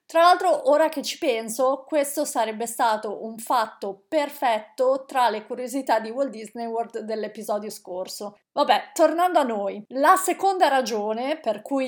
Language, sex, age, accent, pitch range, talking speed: Italian, female, 30-49, native, 215-275 Hz, 150 wpm